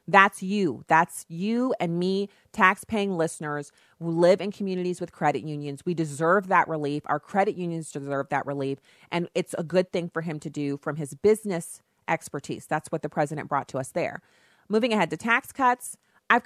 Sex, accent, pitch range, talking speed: female, American, 150-185 Hz, 190 wpm